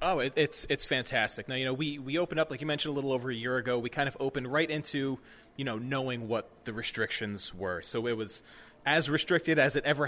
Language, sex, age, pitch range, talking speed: English, male, 30-49, 115-140 Hz, 245 wpm